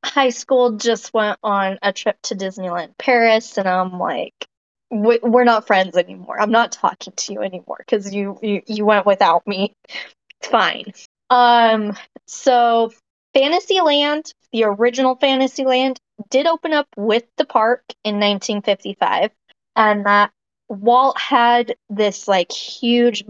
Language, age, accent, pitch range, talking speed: English, 20-39, American, 200-245 Hz, 140 wpm